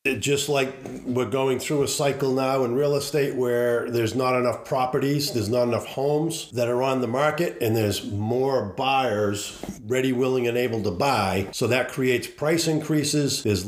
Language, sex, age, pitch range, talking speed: English, male, 50-69, 110-140 Hz, 180 wpm